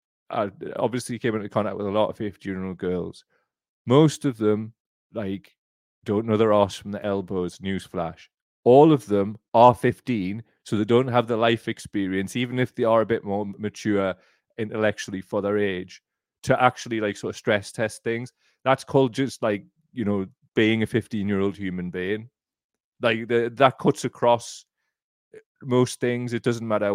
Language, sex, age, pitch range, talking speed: English, male, 30-49, 100-120 Hz, 170 wpm